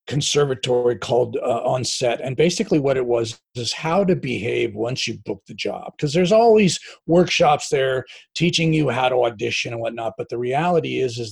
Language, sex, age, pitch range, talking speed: English, male, 40-59, 130-190 Hz, 195 wpm